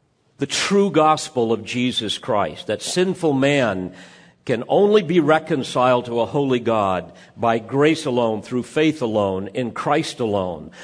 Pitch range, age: 125-165 Hz, 50-69